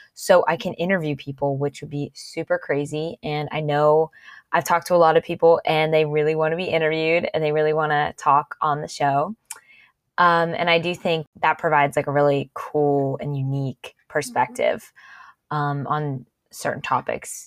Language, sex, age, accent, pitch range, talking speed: English, female, 20-39, American, 150-175 Hz, 185 wpm